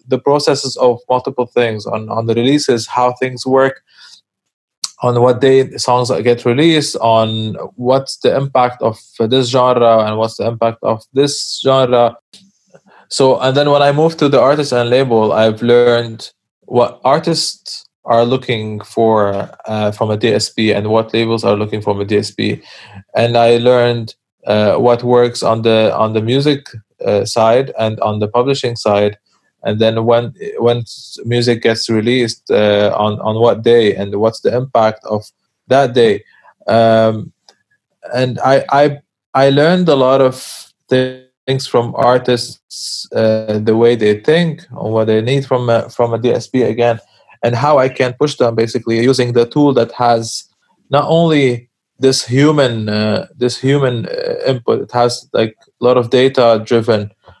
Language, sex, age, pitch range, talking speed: English, male, 20-39, 110-130 Hz, 165 wpm